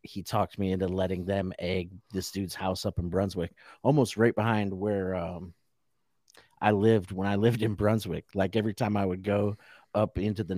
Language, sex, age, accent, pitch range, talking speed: English, male, 30-49, American, 95-110 Hz, 195 wpm